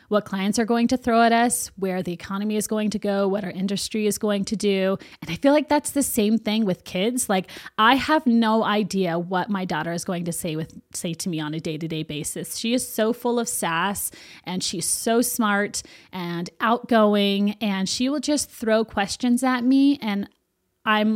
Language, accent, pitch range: English, American, 190-235 Hz